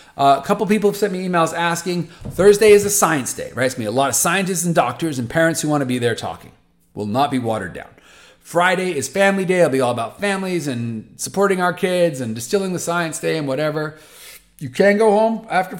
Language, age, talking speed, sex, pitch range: English, 30-49, 230 wpm, male, 120-190 Hz